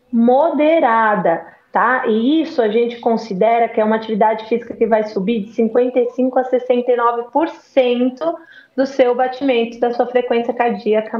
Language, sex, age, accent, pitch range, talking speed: Portuguese, female, 20-39, Brazilian, 220-275 Hz, 140 wpm